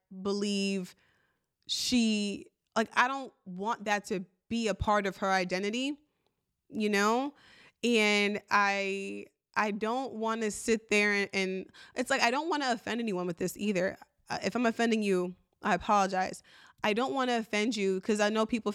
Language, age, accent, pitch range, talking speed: English, 20-39, American, 200-255 Hz, 170 wpm